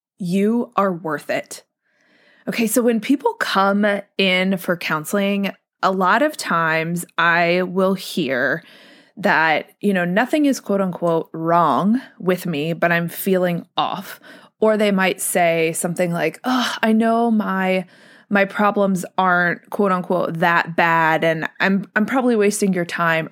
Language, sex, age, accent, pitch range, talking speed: English, female, 20-39, American, 175-225 Hz, 145 wpm